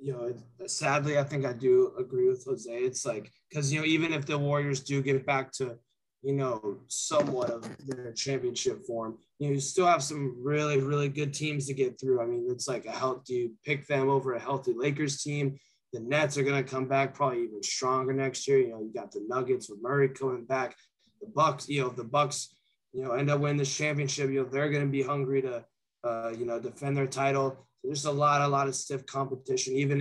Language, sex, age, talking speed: English, male, 20-39, 230 wpm